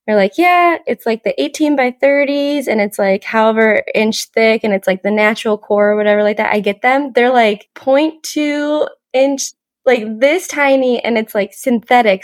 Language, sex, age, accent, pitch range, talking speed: English, female, 10-29, American, 200-280 Hz, 185 wpm